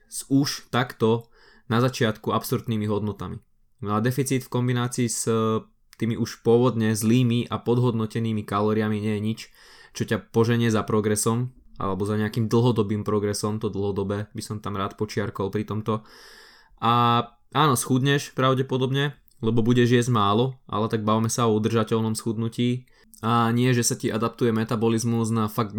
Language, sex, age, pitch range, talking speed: Slovak, male, 20-39, 105-120 Hz, 150 wpm